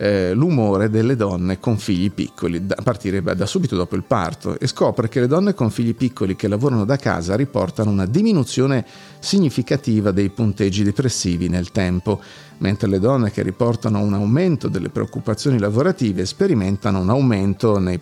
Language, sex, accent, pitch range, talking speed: Italian, male, native, 100-140 Hz, 160 wpm